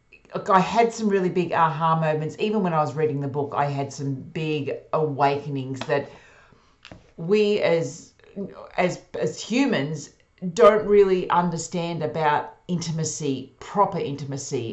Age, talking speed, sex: 40-59, 135 wpm, female